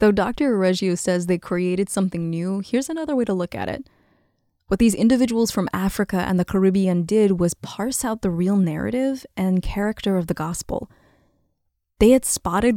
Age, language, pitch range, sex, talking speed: 20-39, English, 175-215 Hz, female, 180 wpm